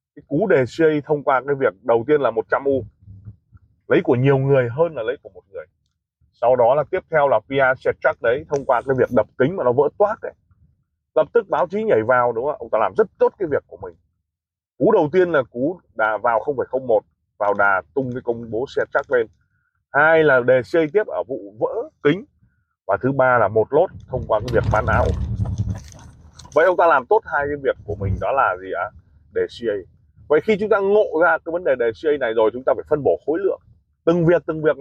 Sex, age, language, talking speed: male, 20-39, Vietnamese, 235 wpm